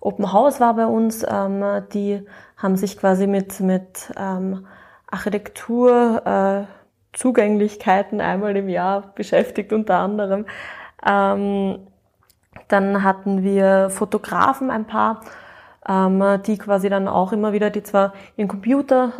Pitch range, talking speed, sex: 190-220 Hz, 125 wpm, female